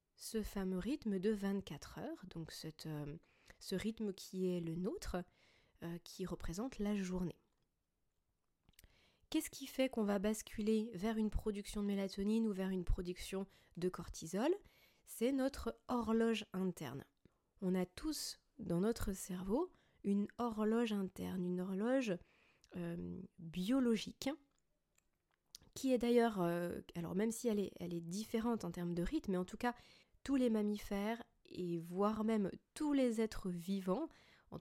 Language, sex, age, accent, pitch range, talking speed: French, female, 20-39, French, 175-225 Hz, 140 wpm